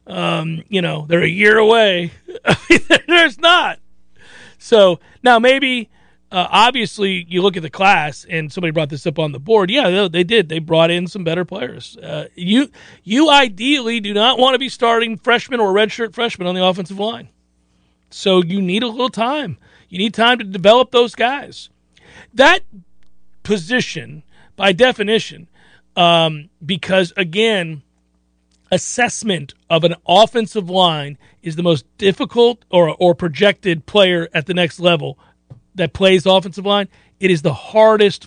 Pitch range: 160-215 Hz